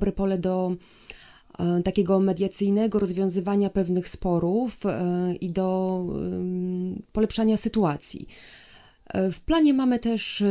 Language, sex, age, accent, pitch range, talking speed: Polish, female, 30-49, native, 180-200 Hz, 90 wpm